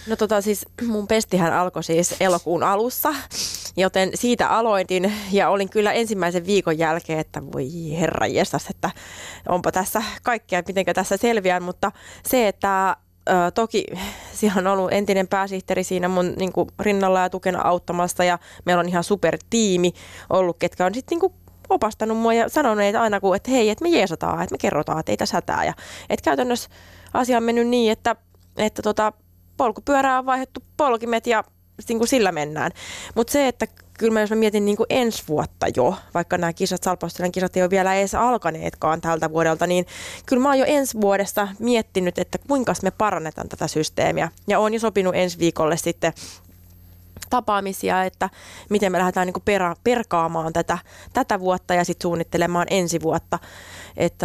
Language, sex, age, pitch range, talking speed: Finnish, female, 20-39, 175-225 Hz, 165 wpm